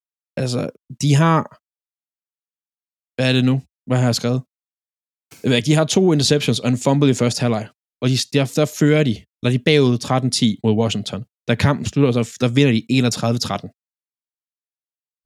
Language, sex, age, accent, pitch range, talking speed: Danish, male, 20-39, native, 120-145 Hz, 155 wpm